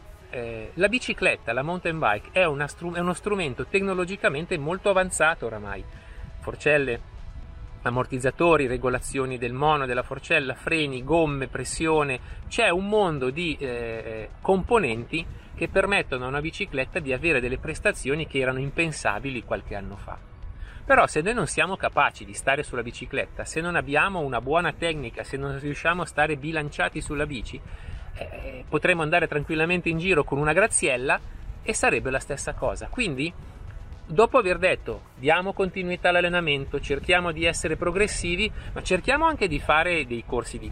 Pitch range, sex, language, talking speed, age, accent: 120-175 Hz, male, Italian, 145 wpm, 30-49, native